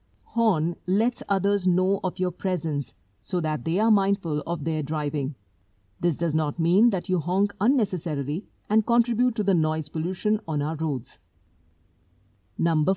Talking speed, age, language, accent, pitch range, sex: 155 wpm, 50-69, English, Indian, 145-205 Hz, female